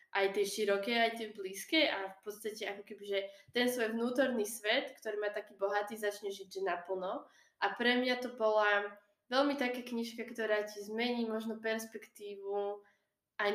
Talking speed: 165 wpm